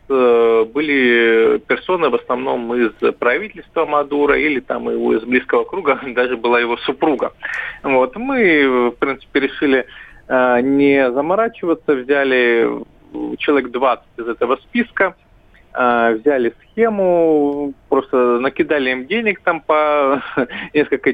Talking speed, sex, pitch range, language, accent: 105 wpm, male, 120-150 Hz, Russian, native